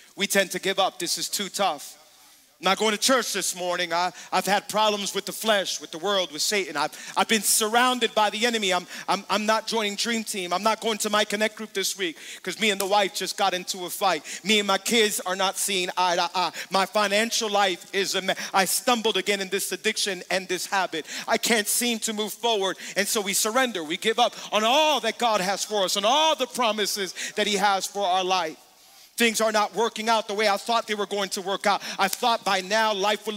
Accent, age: American, 40-59